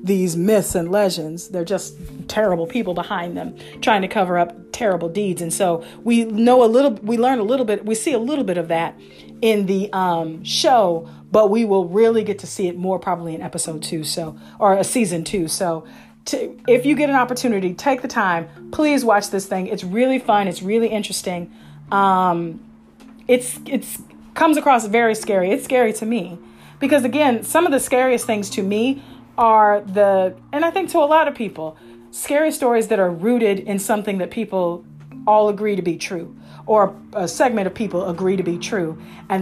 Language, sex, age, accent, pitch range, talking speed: English, female, 40-59, American, 175-230 Hz, 195 wpm